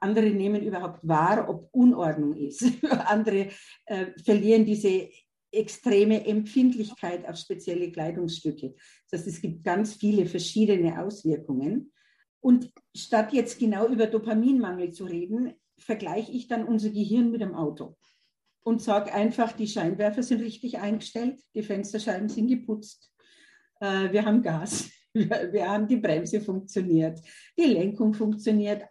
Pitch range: 190-245 Hz